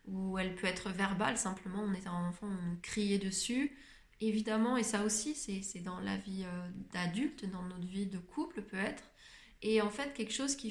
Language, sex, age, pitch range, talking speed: French, female, 20-39, 200-230 Hz, 205 wpm